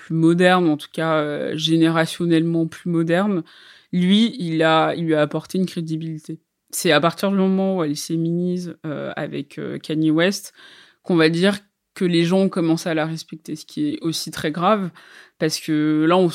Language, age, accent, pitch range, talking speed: French, 20-39, French, 155-180 Hz, 190 wpm